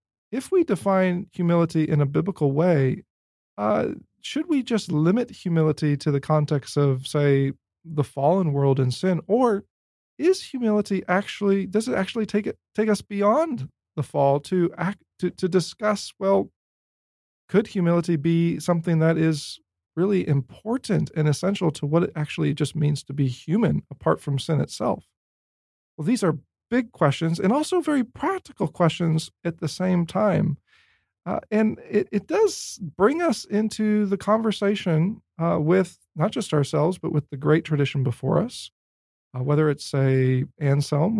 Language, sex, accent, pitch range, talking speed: English, male, American, 145-200 Hz, 155 wpm